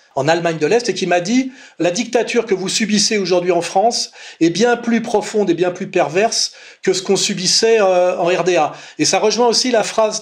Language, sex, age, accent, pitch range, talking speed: French, male, 40-59, French, 180-225 Hz, 225 wpm